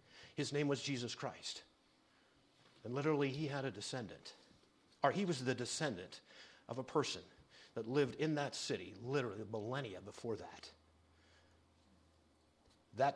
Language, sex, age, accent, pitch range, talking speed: English, male, 50-69, American, 100-140 Hz, 130 wpm